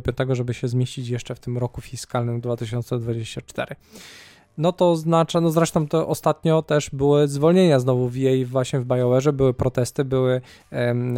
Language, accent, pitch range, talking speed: Polish, native, 125-150 Hz, 160 wpm